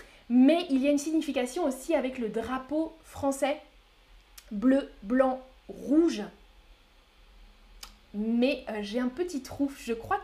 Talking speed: 130 wpm